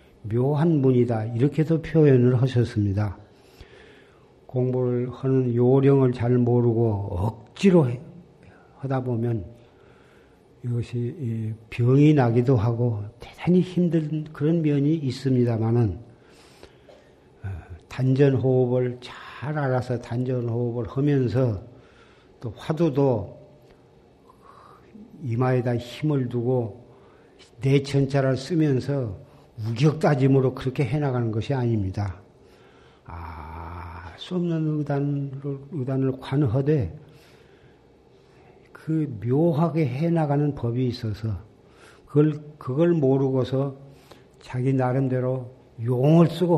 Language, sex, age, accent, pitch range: Korean, male, 50-69, native, 115-140 Hz